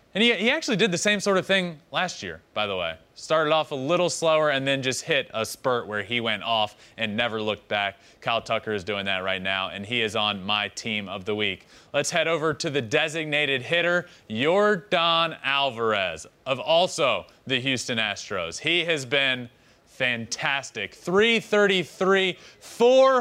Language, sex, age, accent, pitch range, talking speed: English, male, 30-49, American, 115-175 Hz, 180 wpm